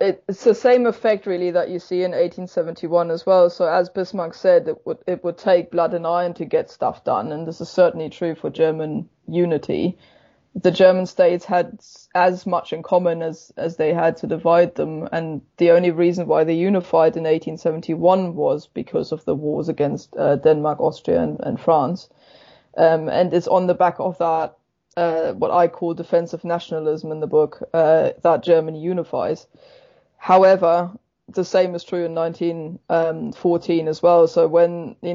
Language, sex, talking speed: English, female, 180 wpm